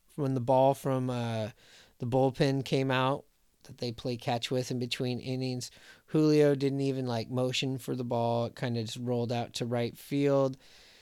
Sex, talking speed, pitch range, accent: male, 185 wpm, 120-140 Hz, American